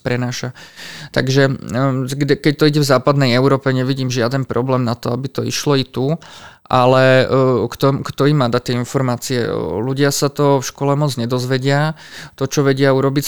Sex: male